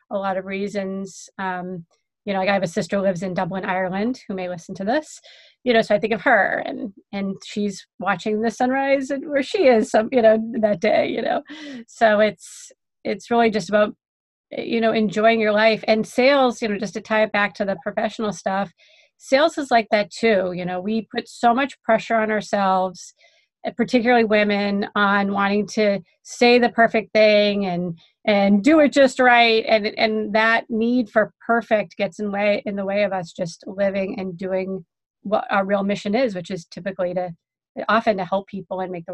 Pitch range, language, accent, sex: 195-235 Hz, English, American, female